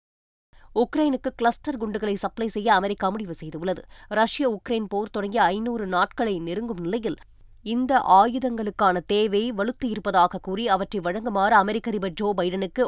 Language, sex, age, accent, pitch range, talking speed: Tamil, female, 20-39, native, 195-235 Hz, 125 wpm